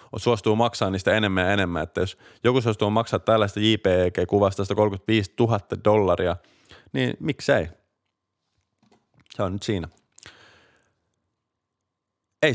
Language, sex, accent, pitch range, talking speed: Finnish, male, native, 100-130 Hz, 120 wpm